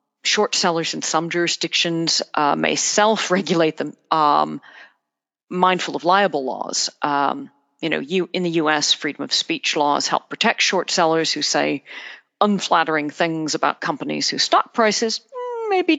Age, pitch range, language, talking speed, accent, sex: 40-59, 160-230 Hz, English, 145 wpm, American, female